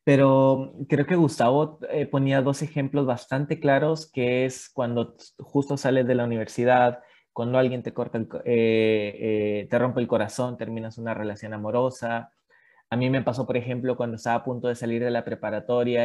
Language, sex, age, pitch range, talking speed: Spanish, male, 20-39, 120-135 Hz, 175 wpm